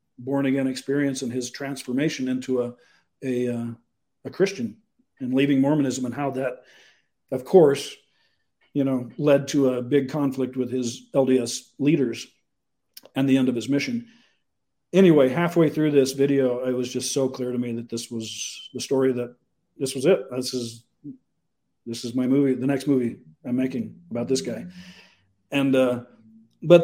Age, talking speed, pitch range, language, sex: 50-69, 170 wpm, 130-170 Hz, English, male